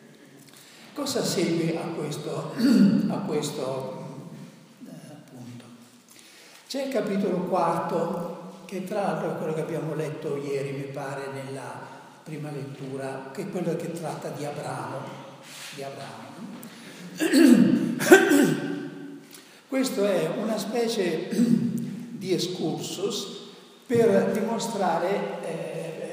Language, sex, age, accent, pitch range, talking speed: Italian, male, 60-79, native, 155-220 Hz, 100 wpm